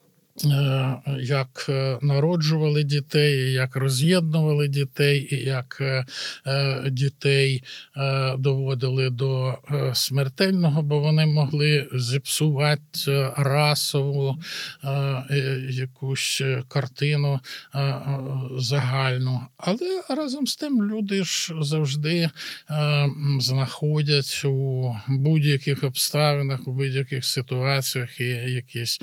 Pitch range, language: 135-160 Hz, Ukrainian